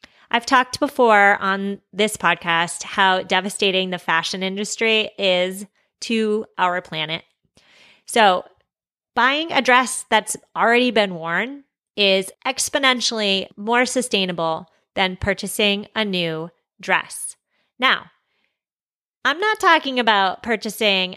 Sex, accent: female, American